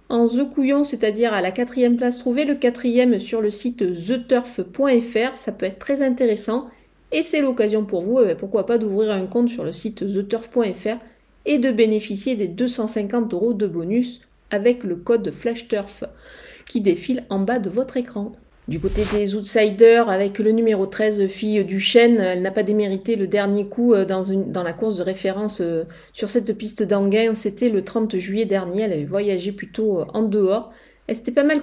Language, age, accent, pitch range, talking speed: French, 40-59, French, 200-240 Hz, 185 wpm